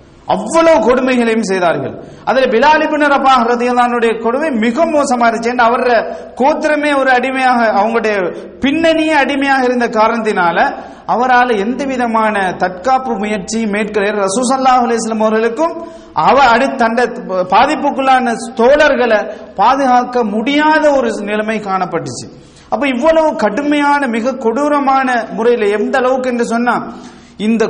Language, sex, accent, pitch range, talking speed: English, male, Indian, 205-260 Hz, 105 wpm